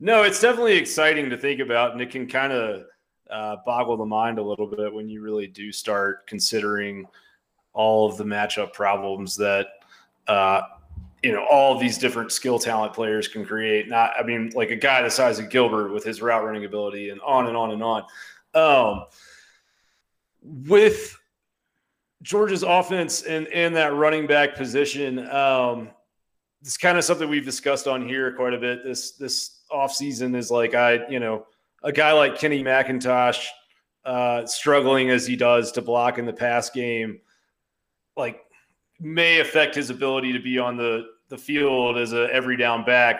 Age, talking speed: 30-49, 175 wpm